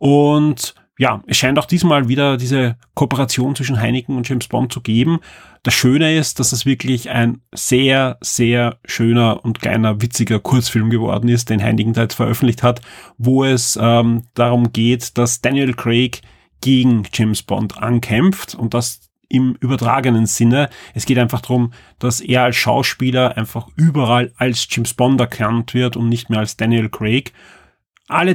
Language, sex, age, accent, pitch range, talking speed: German, male, 30-49, German, 120-145 Hz, 165 wpm